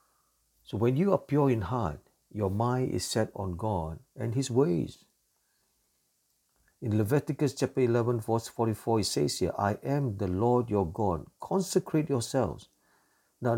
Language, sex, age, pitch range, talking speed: English, male, 60-79, 105-140 Hz, 150 wpm